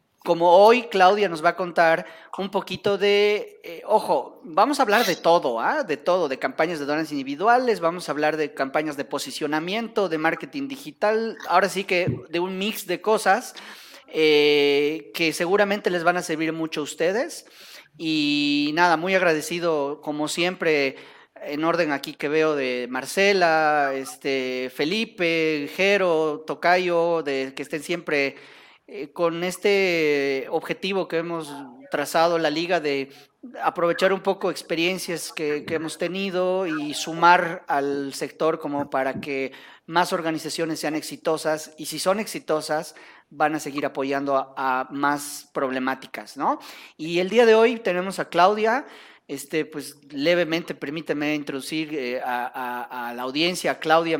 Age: 30-49